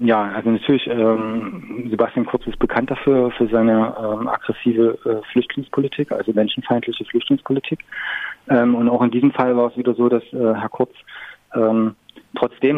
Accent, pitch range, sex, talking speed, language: German, 110-125 Hz, male, 160 wpm, German